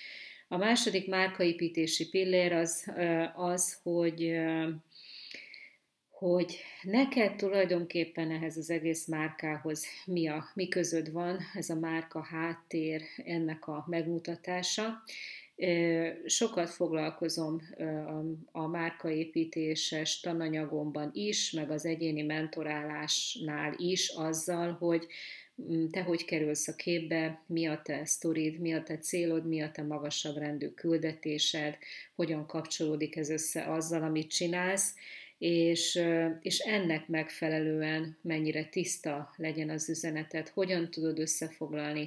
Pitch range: 155-170 Hz